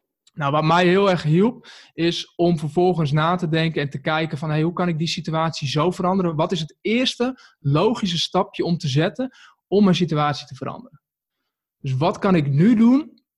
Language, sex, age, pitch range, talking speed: Dutch, male, 20-39, 145-180 Hz, 195 wpm